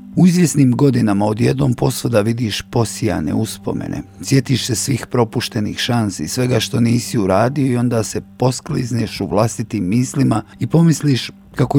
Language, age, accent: Croatian, 50-69, native